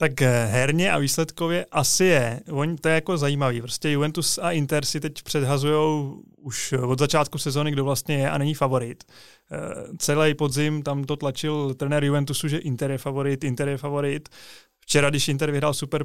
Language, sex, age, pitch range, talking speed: Czech, male, 20-39, 140-155 Hz, 175 wpm